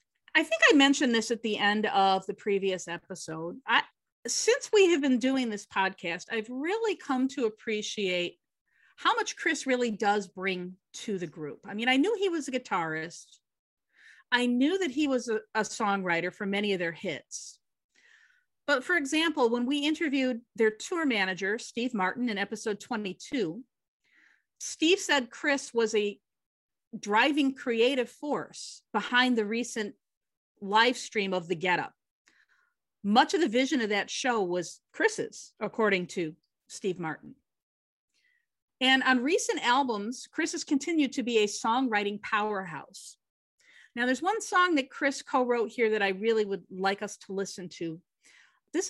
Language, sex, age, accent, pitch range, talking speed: English, female, 40-59, American, 200-285 Hz, 160 wpm